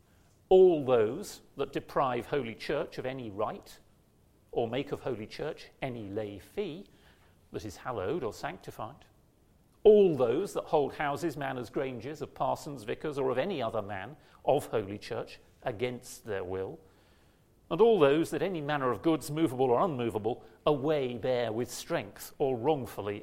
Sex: male